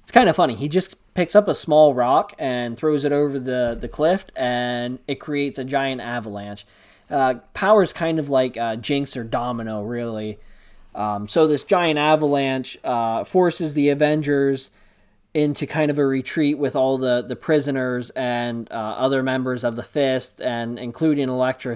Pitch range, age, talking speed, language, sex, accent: 110-140 Hz, 20-39, 175 wpm, English, male, American